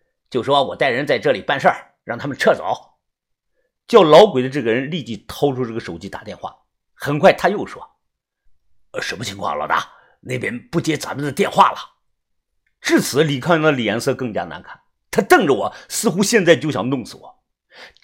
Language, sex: Chinese, male